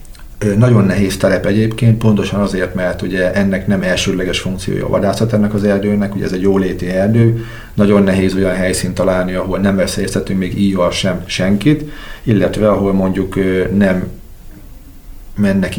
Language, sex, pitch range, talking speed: Hungarian, male, 90-100 Hz, 150 wpm